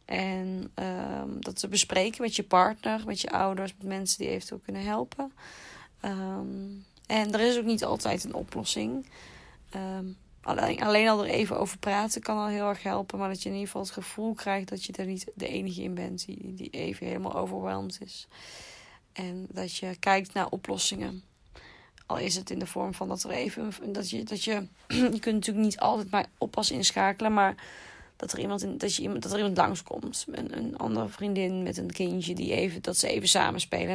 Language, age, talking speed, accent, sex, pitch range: Dutch, 20-39, 200 wpm, Dutch, female, 185-225 Hz